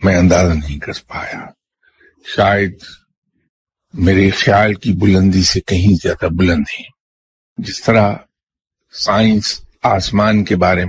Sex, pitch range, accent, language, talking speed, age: male, 90-110 Hz, Indian, English, 110 wpm, 50-69